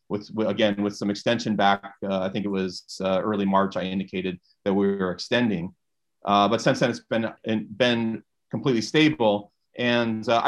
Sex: male